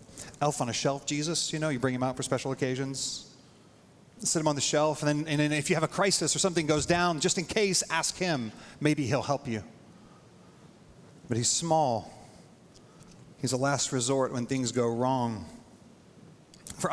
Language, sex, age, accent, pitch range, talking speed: English, male, 40-59, American, 135-165 Hz, 190 wpm